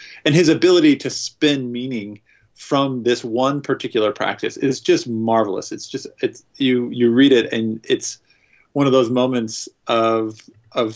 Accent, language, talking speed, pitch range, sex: American, English, 160 wpm, 115-140 Hz, male